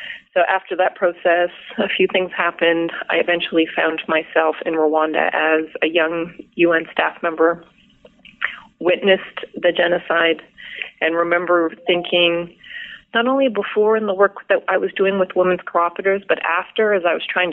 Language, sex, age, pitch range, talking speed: English, female, 30-49, 165-200 Hz, 155 wpm